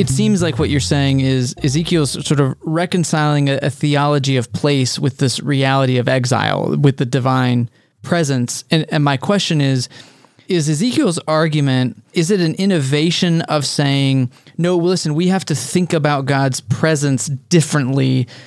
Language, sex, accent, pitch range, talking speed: English, male, American, 130-160 Hz, 160 wpm